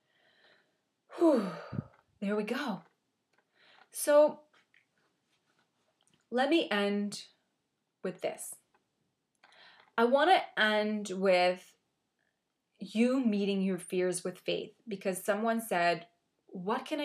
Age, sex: 20-39, female